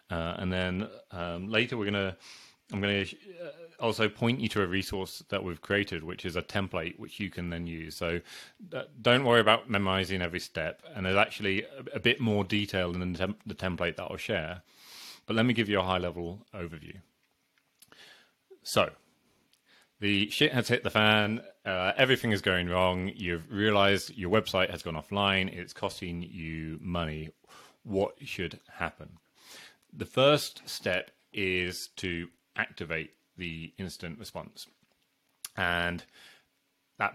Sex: male